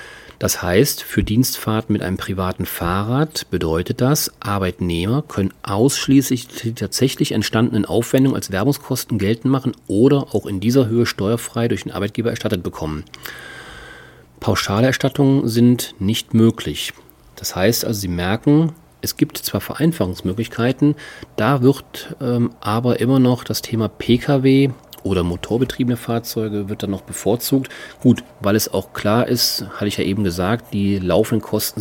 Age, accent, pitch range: 40-59, German, 100-125 Hz